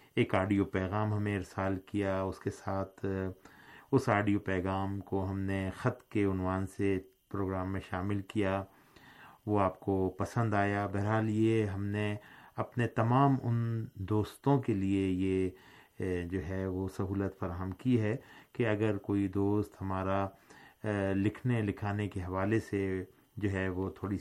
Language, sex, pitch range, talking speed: Urdu, male, 95-115 Hz, 150 wpm